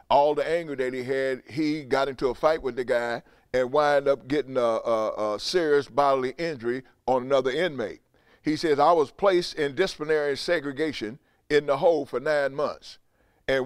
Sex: male